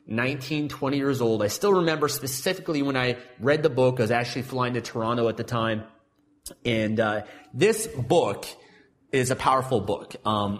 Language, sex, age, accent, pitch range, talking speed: English, male, 30-49, American, 115-145 Hz, 175 wpm